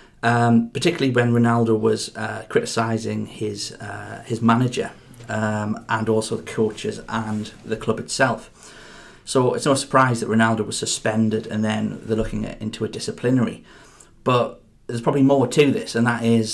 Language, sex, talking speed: English, male, 165 wpm